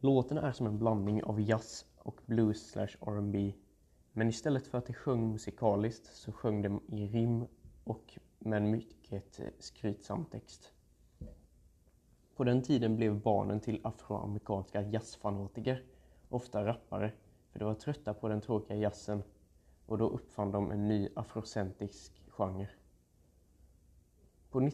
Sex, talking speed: male, 135 wpm